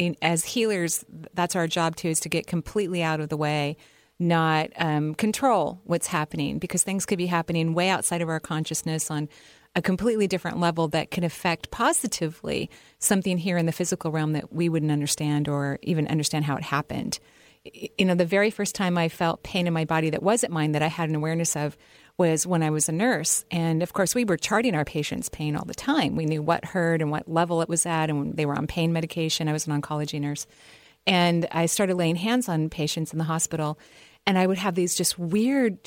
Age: 40-59